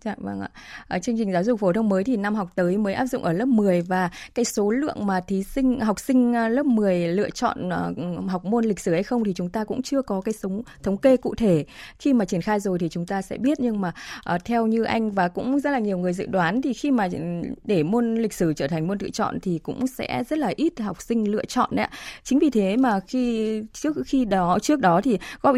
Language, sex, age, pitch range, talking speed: Vietnamese, female, 20-39, 180-245 Hz, 265 wpm